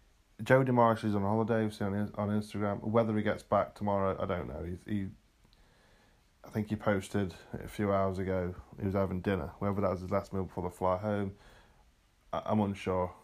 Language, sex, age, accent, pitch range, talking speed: English, male, 20-39, British, 90-110 Hz, 200 wpm